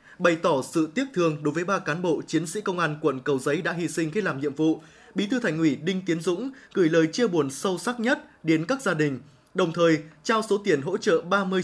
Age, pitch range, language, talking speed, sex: 20-39, 155-210 Hz, Vietnamese, 260 wpm, male